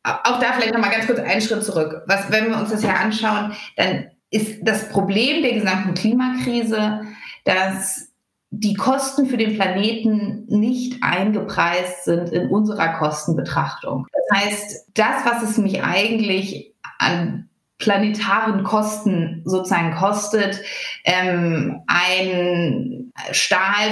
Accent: German